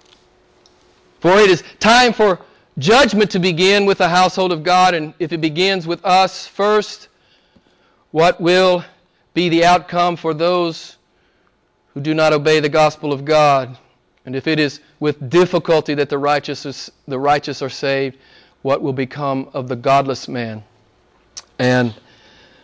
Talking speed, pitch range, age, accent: 145 wpm, 145-185 Hz, 40-59, American